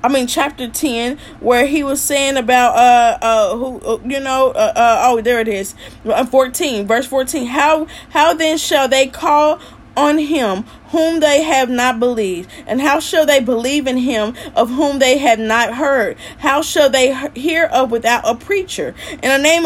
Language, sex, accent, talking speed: English, female, American, 185 wpm